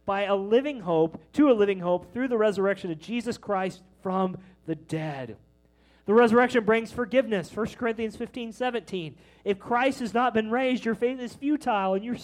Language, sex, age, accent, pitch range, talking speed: English, male, 30-49, American, 170-225 Hz, 180 wpm